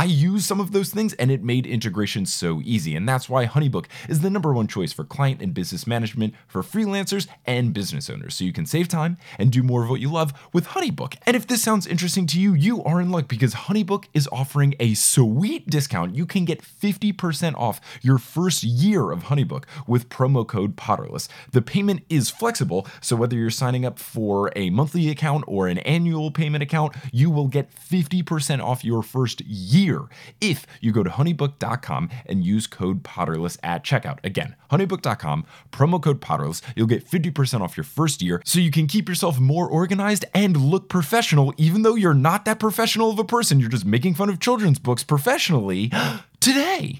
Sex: male